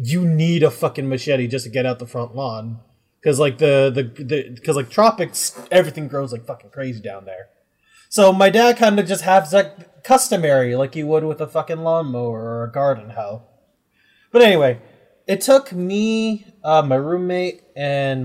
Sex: male